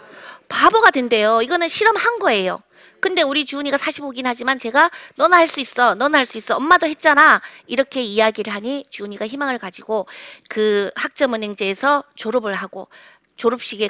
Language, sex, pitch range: Korean, female, 215-295 Hz